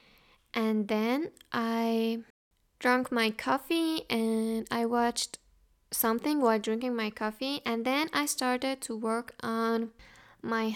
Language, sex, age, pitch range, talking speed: English, female, 10-29, 225-275 Hz, 125 wpm